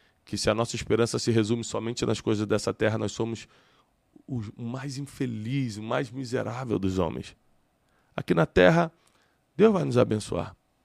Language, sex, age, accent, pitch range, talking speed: Portuguese, male, 20-39, Brazilian, 105-125 Hz, 160 wpm